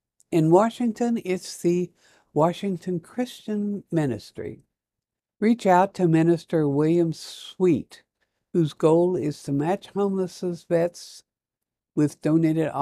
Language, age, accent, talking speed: English, 60-79, American, 105 wpm